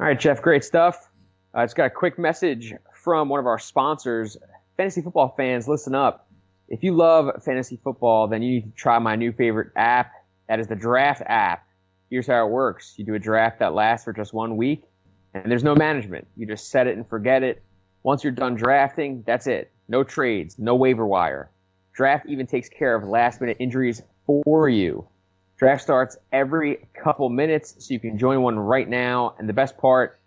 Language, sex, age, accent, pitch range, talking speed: English, male, 20-39, American, 105-130 Hz, 200 wpm